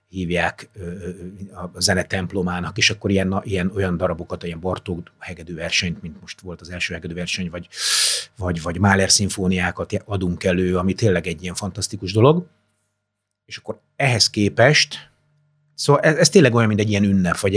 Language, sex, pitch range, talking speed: Hungarian, male, 95-120 Hz, 155 wpm